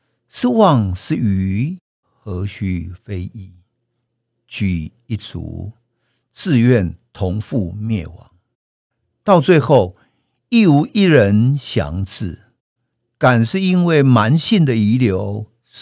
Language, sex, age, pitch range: Chinese, male, 50-69, 95-130 Hz